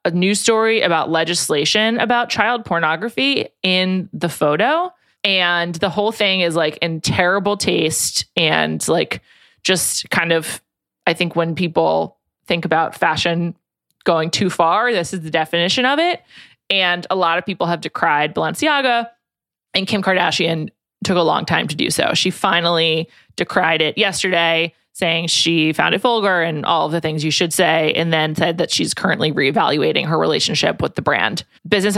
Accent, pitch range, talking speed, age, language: American, 165-205 Hz, 170 wpm, 20-39, English